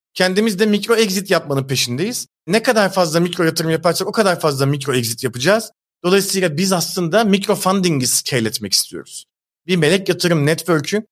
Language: Turkish